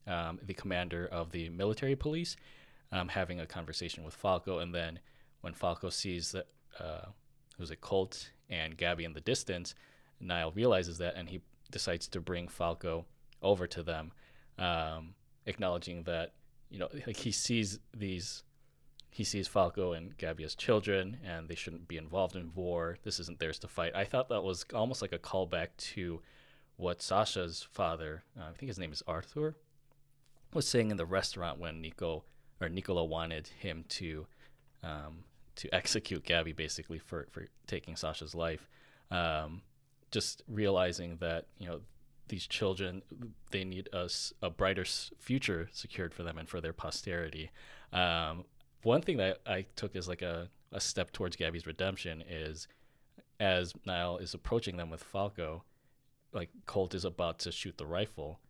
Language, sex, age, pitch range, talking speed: English, male, 20-39, 85-100 Hz, 160 wpm